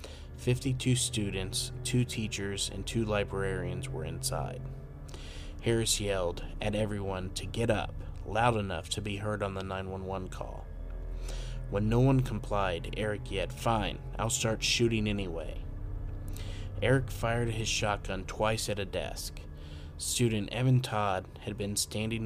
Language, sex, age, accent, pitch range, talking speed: English, male, 30-49, American, 95-115 Hz, 135 wpm